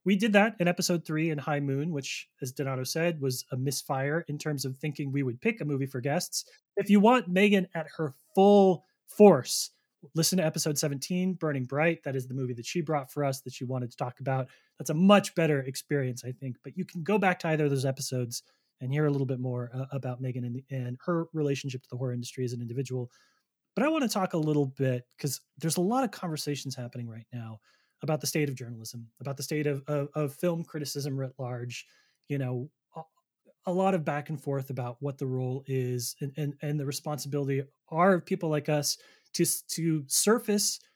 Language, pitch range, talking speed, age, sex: English, 130-165 Hz, 225 wpm, 20-39, male